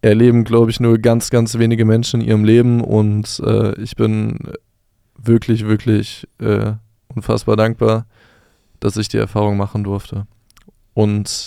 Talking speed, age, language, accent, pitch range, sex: 140 wpm, 20-39, German, German, 110-120 Hz, male